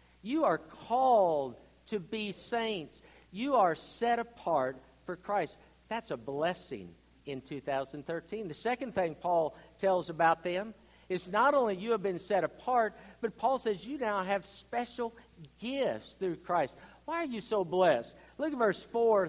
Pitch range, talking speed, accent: 150-215 Hz, 160 wpm, American